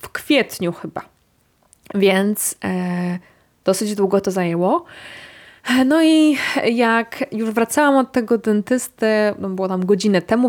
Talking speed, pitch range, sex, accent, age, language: 115 wpm, 185-230 Hz, female, native, 20-39, Polish